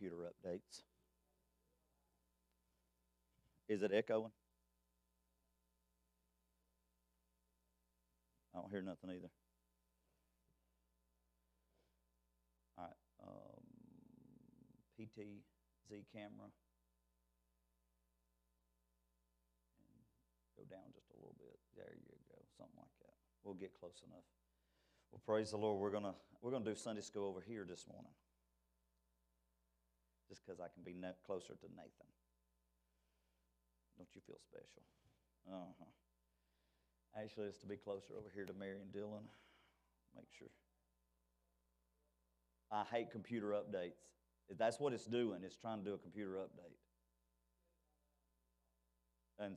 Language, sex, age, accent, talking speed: English, male, 50-69, American, 110 wpm